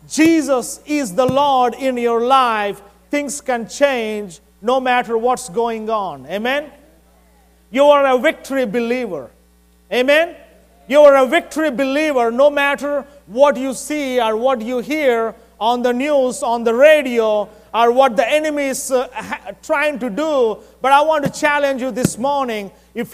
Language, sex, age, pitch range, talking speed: English, male, 30-49, 235-290 Hz, 155 wpm